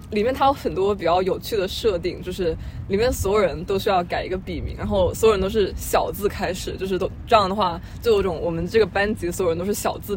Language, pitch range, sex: Chinese, 185-260 Hz, female